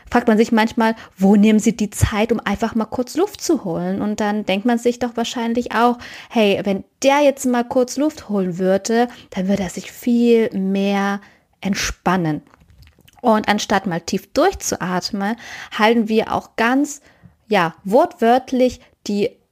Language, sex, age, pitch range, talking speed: German, female, 20-39, 190-230 Hz, 160 wpm